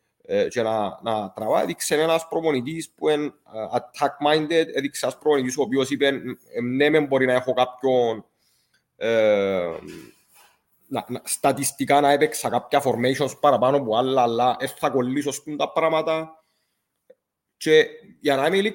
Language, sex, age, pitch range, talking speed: English, male, 30-49, 135-180 Hz, 110 wpm